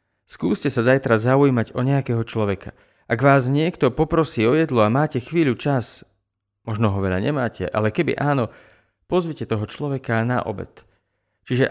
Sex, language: male, Slovak